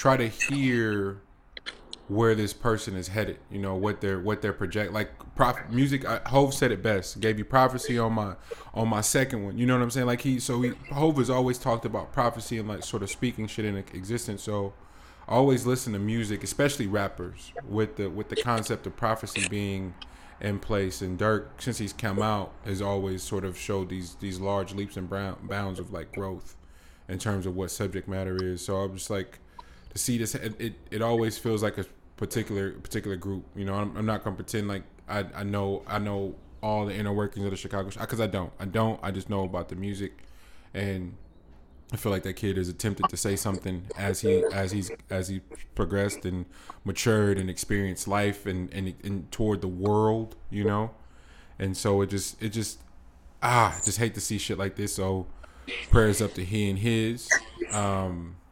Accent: American